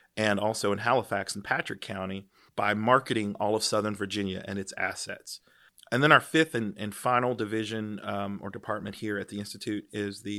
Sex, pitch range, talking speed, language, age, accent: male, 100-110 Hz, 190 wpm, English, 30-49, American